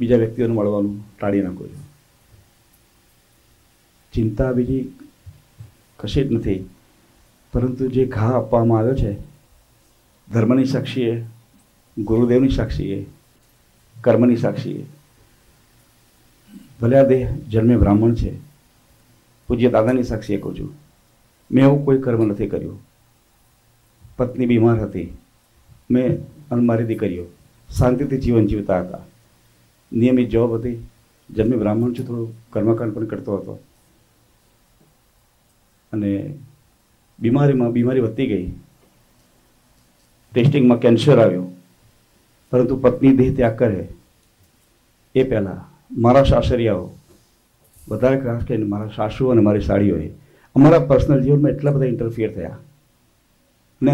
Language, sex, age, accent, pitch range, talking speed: Gujarati, male, 50-69, native, 105-130 Hz, 95 wpm